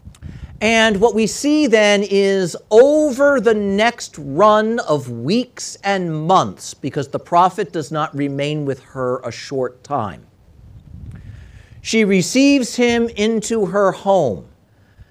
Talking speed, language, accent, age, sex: 125 wpm, English, American, 50-69, male